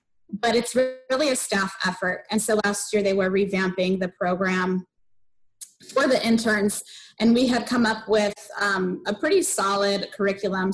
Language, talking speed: English, 160 wpm